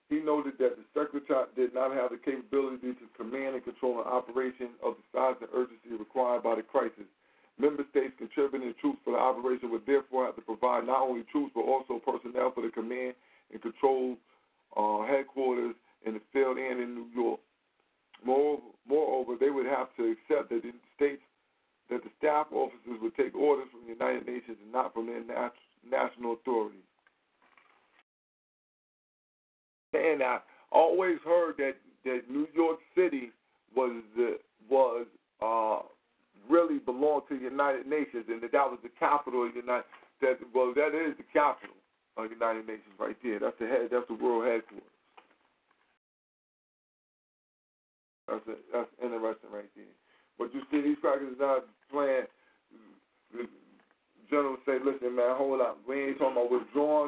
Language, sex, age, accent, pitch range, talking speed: English, male, 50-69, American, 120-145 Hz, 160 wpm